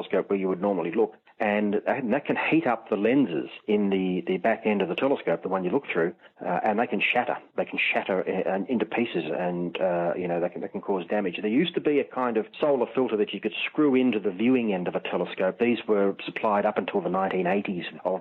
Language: English